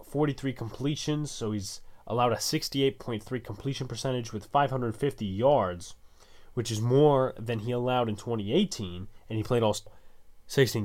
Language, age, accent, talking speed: English, 20-39, American, 140 wpm